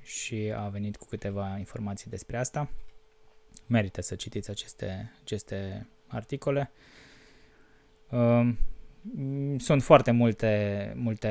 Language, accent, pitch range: Romanian, native, 105-135 Hz